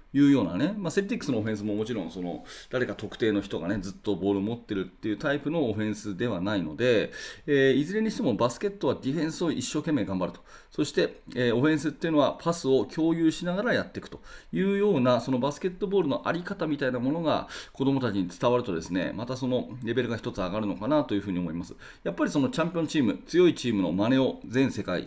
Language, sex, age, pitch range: Japanese, male, 30-49, 105-155 Hz